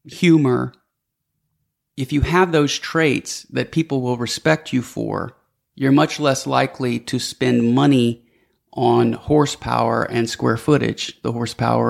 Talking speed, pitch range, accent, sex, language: 130 wpm, 120-140 Hz, American, male, English